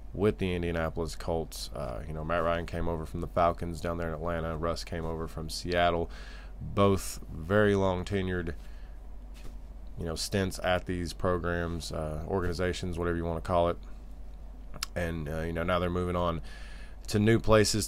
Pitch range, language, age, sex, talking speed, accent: 80-95 Hz, English, 20-39, male, 175 wpm, American